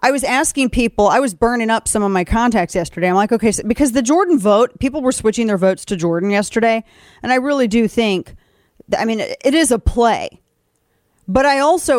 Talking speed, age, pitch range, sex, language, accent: 210 wpm, 40-59, 195-275 Hz, female, English, American